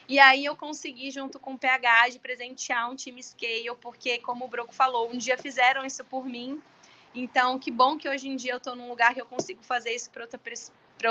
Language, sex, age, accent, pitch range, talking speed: Portuguese, female, 20-39, Brazilian, 230-265 Hz, 225 wpm